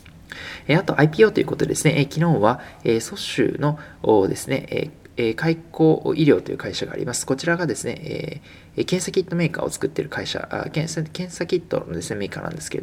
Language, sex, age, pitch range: Japanese, male, 20-39, 125-170 Hz